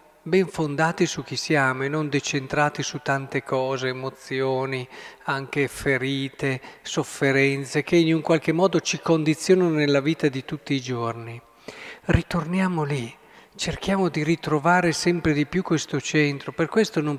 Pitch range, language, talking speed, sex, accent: 135-165 Hz, Italian, 145 wpm, male, native